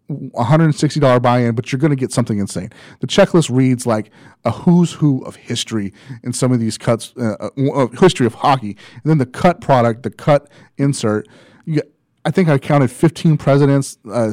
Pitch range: 115-145 Hz